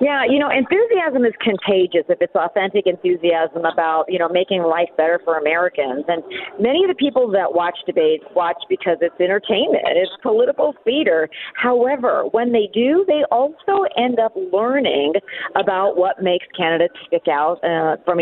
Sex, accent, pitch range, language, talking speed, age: female, American, 175-275 Hz, English, 165 wpm, 40-59